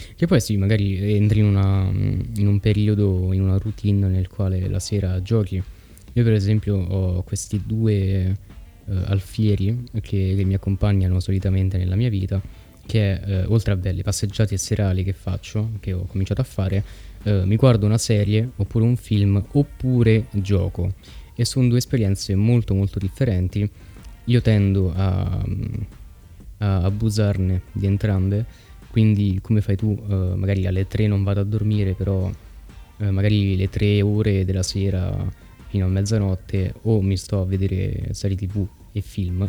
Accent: native